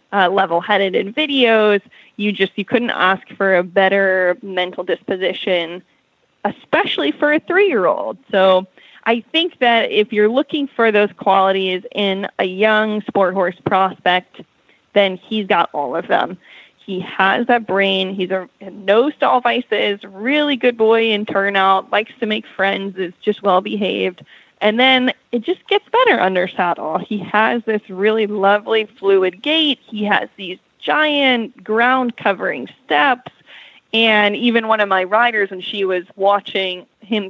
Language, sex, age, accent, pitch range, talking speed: English, female, 10-29, American, 190-235 Hz, 150 wpm